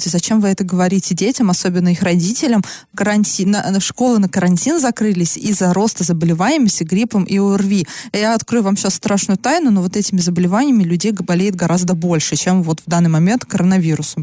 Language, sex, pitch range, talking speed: Russian, female, 180-220 Hz, 175 wpm